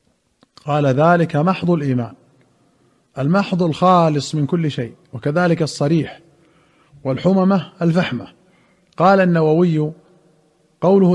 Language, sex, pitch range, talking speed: Arabic, male, 150-175 Hz, 85 wpm